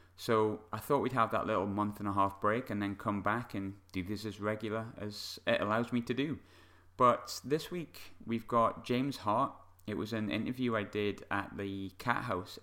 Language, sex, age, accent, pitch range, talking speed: English, male, 30-49, British, 95-115 Hz, 210 wpm